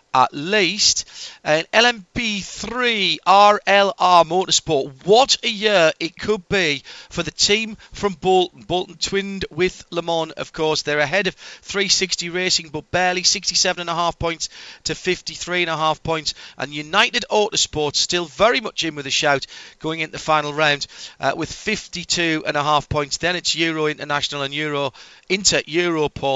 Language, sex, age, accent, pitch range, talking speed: English, male, 40-59, British, 145-180 Hz, 160 wpm